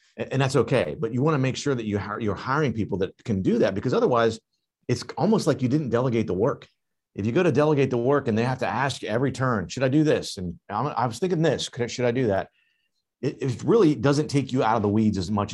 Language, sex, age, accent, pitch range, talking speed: English, male, 40-59, American, 105-135 Hz, 275 wpm